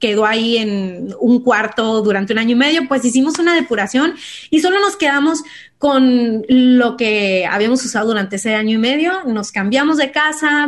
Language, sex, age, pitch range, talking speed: Spanish, female, 30-49, 215-280 Hz, 180 wpm